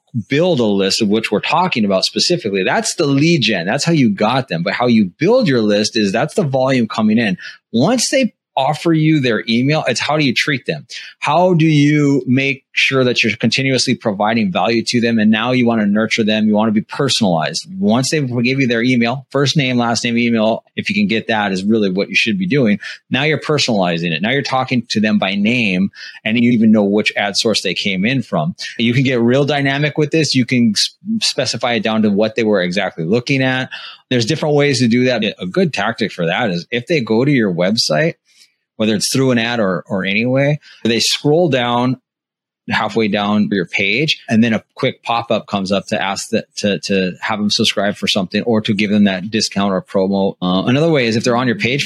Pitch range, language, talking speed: 110-145 Hz, English, 230 wpm